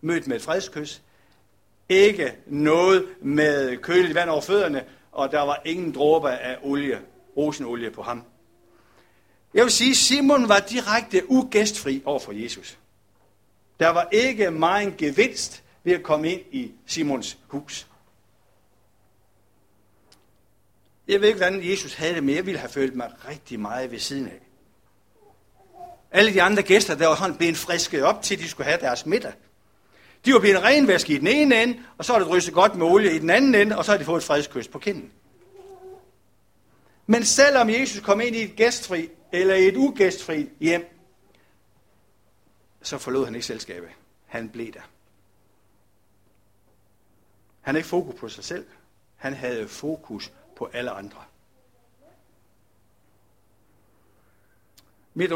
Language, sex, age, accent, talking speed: Danish, male, 60-79, native, 150 wpm